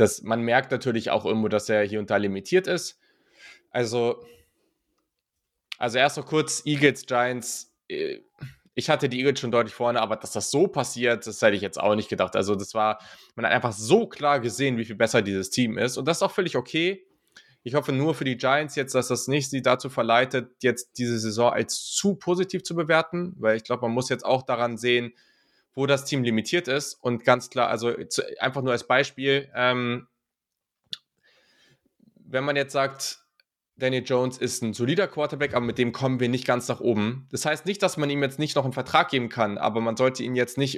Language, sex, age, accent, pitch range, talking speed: German, male, 20-39, German, 115-140 Hz, 210 wpm